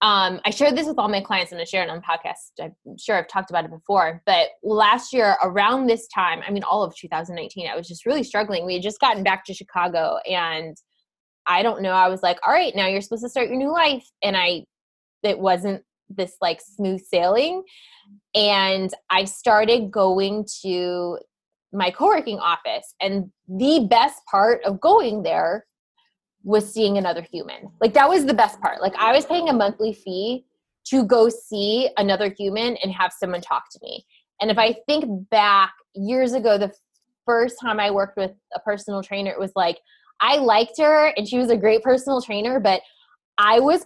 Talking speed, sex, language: 195 wpm, female, English